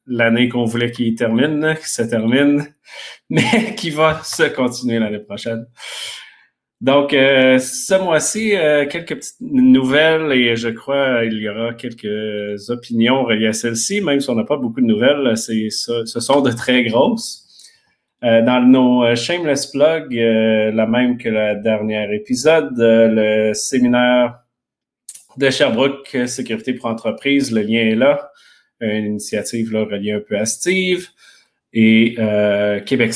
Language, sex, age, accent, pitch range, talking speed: French, male, 30-49, Canadian, 110-145 Hz, 140 wpm